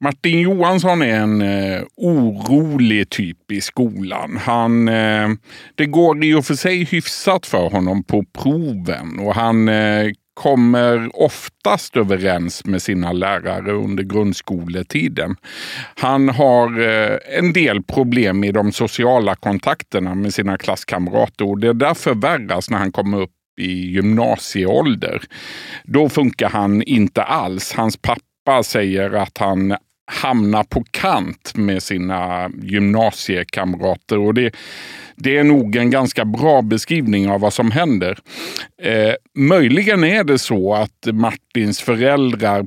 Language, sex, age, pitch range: Swedish, male, 50-69, 100-125 Hz